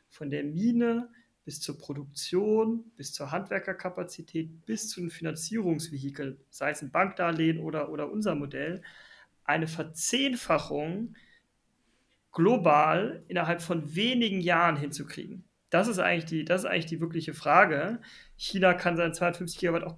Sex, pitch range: male, 145-175 Hz